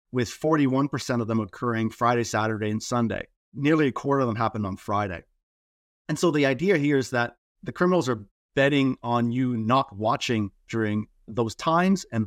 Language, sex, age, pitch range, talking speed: English, male, 30-49, 110-130 Hz, 175 wpm